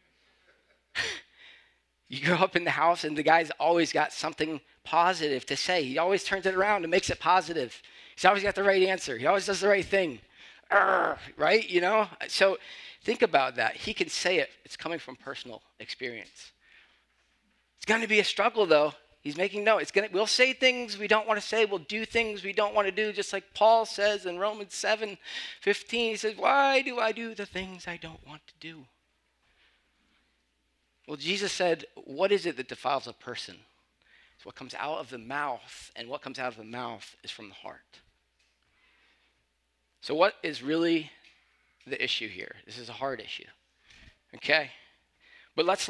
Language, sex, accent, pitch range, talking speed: English, male, American, 140-205 Hz, 185 wpm